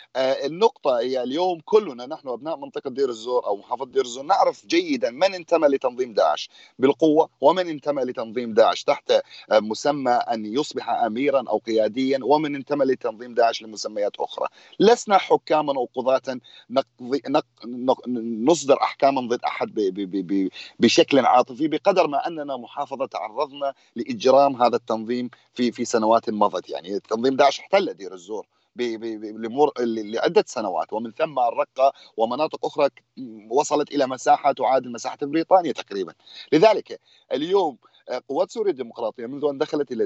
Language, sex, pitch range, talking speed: Arabic, male, 120-160 Hz, 130 wpm